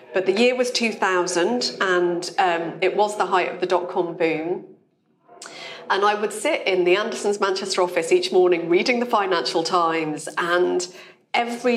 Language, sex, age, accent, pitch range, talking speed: English, female, 40-59, British, 170-205 Hz, 165 wpm